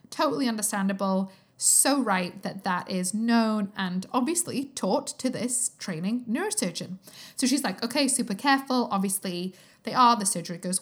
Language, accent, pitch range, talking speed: English, British, 200-260 Hz, 150 wpm